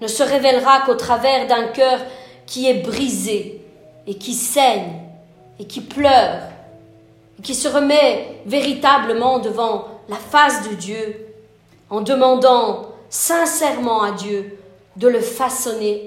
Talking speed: 125 wpm